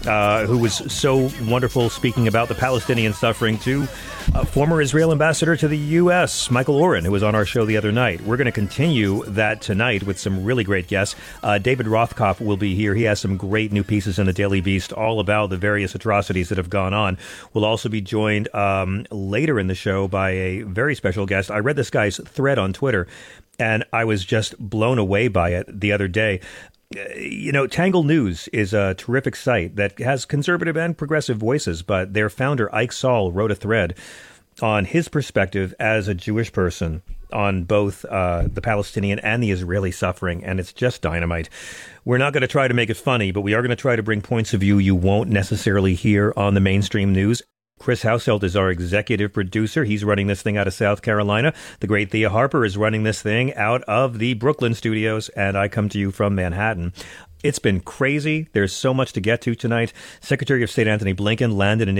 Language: English